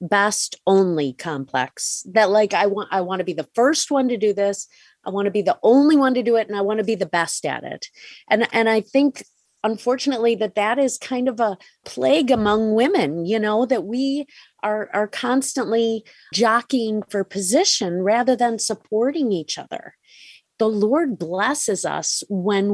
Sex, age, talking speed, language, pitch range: female, 30-49, 185 wpm, English, 195-240 Hz